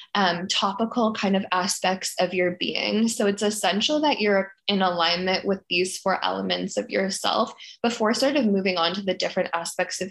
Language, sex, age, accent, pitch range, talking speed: English, female, 10-29, American, 185-225 Hz, 185 wpm